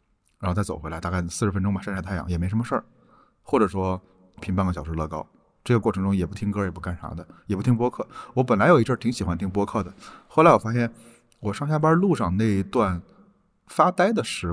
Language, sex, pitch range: Chinese, male, 95-125 Hz